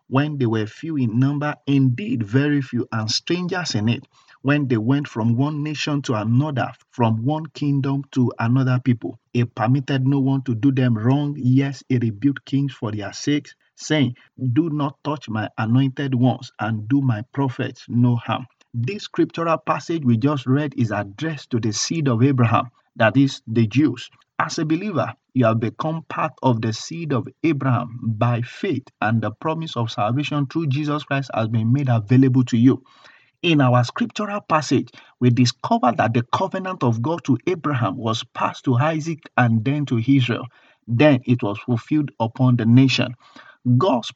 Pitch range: 120-145 Hz